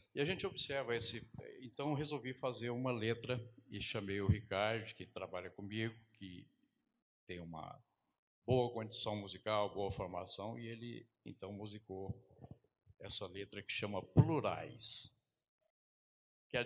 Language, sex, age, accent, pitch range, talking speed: Portuguese, male, 60-79, Brazilian, 105-135 Hz, 125 wpm